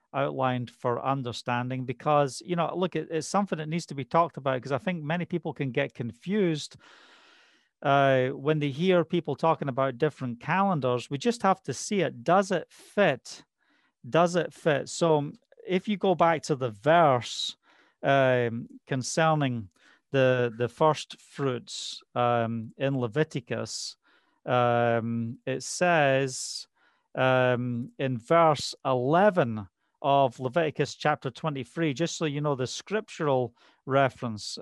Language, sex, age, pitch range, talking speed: English, male, 40-59, 130-165 Hz, 135 wpm